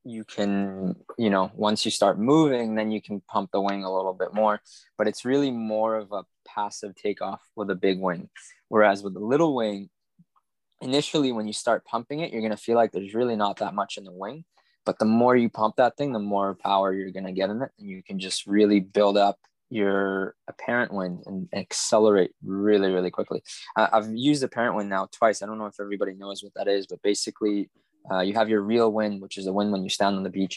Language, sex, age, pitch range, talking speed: English, male, 20-39, 95-110 Hz, 230 wpm